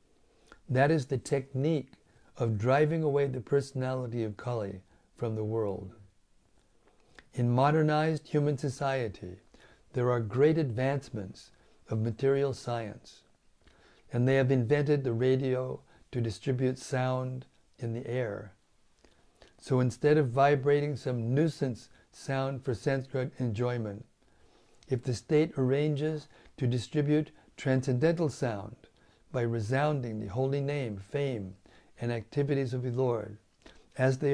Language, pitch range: English, 115-140 Hz